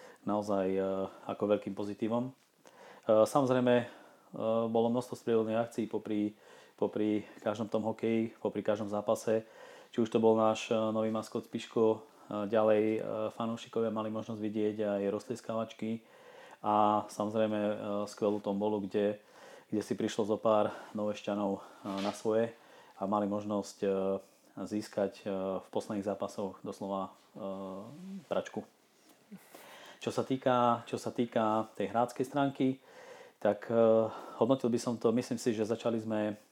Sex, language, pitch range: male, Slovak, 105-115 Hz